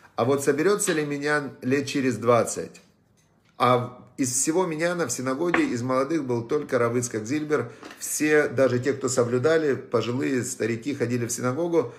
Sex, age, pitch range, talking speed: male, 40-59, 120-150 Hz, 155 wpm